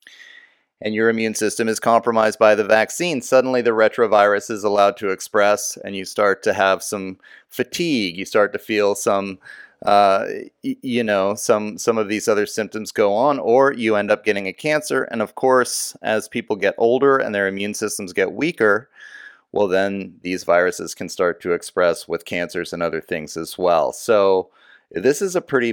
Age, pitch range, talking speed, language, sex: 30-49, 105-130 Hz, 185 wpm, English, male